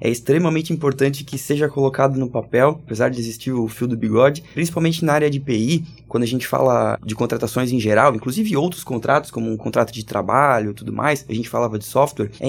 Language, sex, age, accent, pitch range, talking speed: Portuguese, male, 20-39, Brazilian, 120-150 Hz, 215 wpm